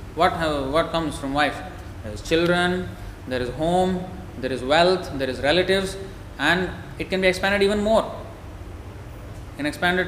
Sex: male